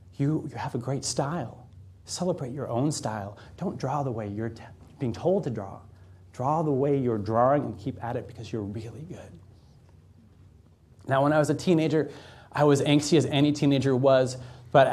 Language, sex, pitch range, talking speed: Arabic, male, 115-145 Hz, 185 wpm